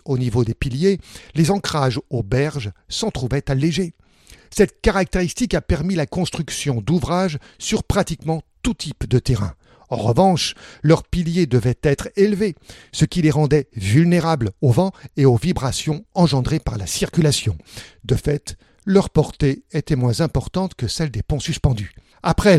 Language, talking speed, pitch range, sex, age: French, 155 wpm, 130-175 Hz, male, 60-79